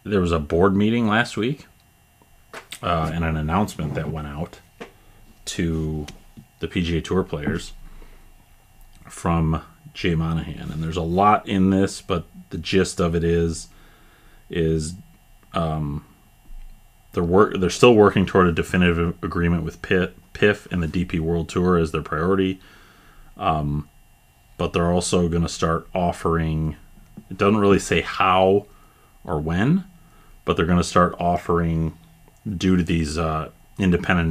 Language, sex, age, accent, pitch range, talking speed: English, male, 30-49, American, 80-95 Hz, 140 wpm